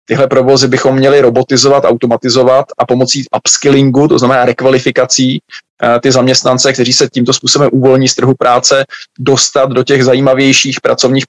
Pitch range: 125-135 Hz